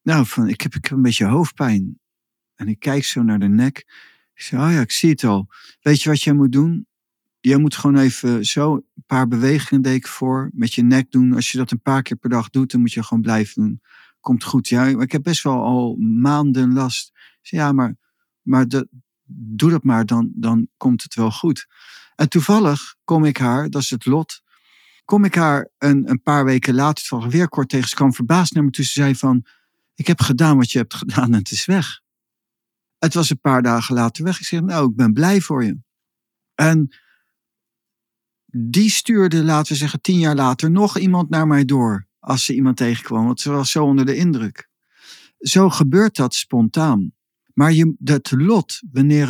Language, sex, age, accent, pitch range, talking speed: Dutch, male, 50-69, Dutch, 120-155 Hz, 210 wpm